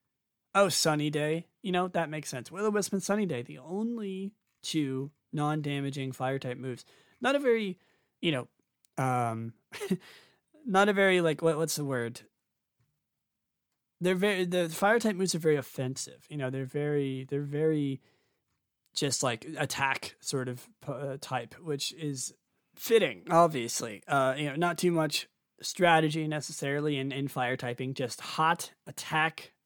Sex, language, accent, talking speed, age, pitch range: male, English, American, 150 wpm, 20-39, 130-185 Hz